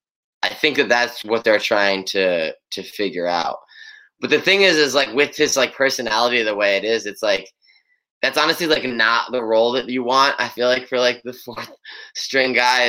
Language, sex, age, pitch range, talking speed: English, male, 10-29, 105-150 Hz, 205 wpm